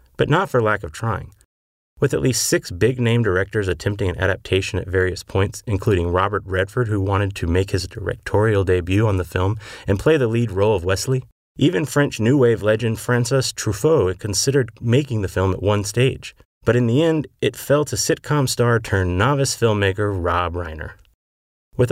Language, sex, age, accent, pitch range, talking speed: English, male, 30-49, American, 95-125 Hz, 175 wpm